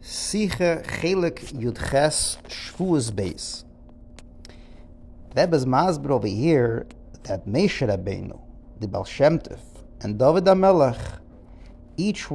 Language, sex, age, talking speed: English, male, 50-69, 85 wpm